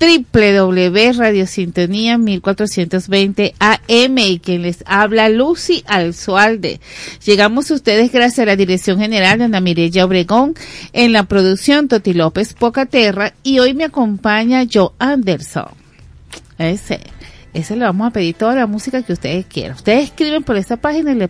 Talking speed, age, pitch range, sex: 150 wpm, 40-59, 185-240 Hz, female